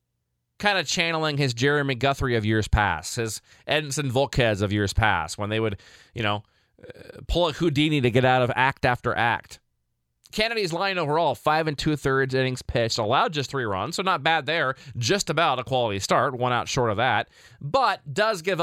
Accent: American